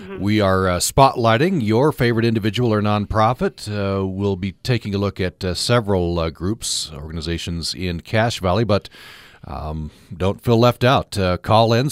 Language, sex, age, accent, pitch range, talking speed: English, male, 40-59, American, 90-110 Hz, 165 wpm